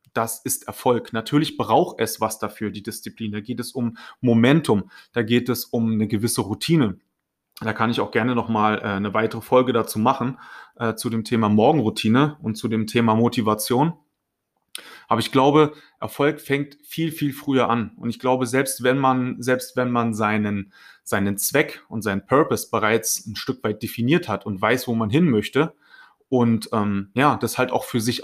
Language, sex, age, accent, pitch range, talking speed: German, male, 30-49, German, 110-140 Hz, 185 wpm